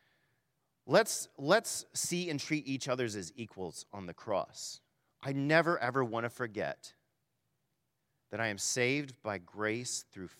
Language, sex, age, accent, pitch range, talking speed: English, male, 40-59, American, 100-130 Hz, 145 wpm